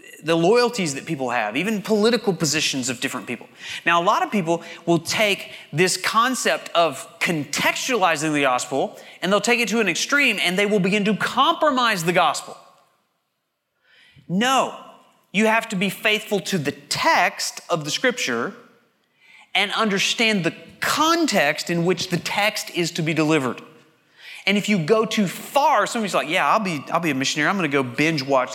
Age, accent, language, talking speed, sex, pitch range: 30-49, American, English, 175 wpm, male, 155-215 Hz